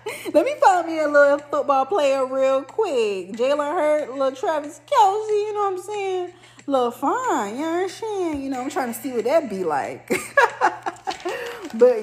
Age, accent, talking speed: 20-39, American, 190 wpm